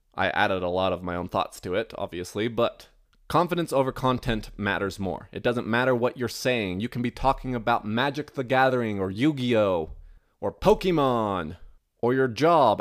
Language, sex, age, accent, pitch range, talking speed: English, male, 30-49, American, 105-130 Hz, 180 wpm